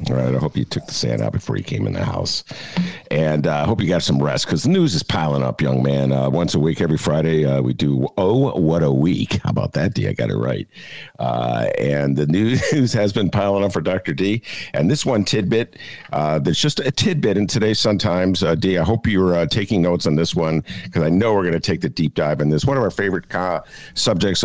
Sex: male